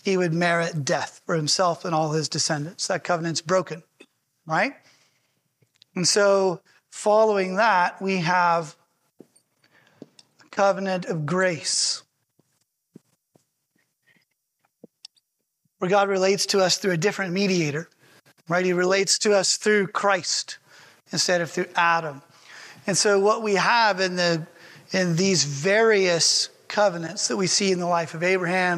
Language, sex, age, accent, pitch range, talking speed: English, male, 30-49, American, 165-190 Hz, 130 wpm